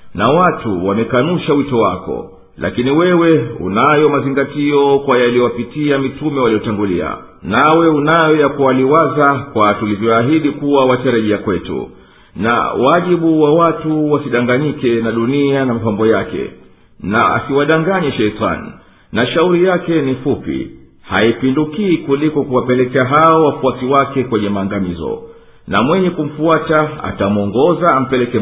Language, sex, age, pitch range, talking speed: Swahili, male, 50-69, 110-150 Hz, 110 wpm